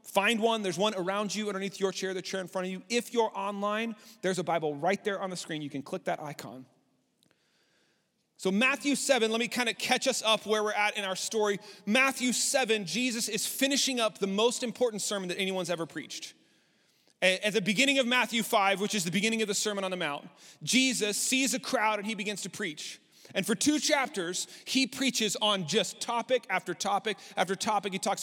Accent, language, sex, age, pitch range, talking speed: American, English, male, 30-49, 185-230 Hz, 215 wpm